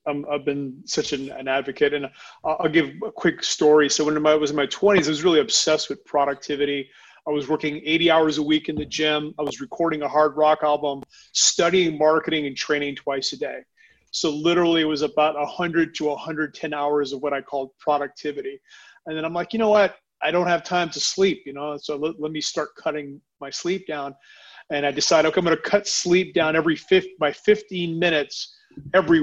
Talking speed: 205 wpm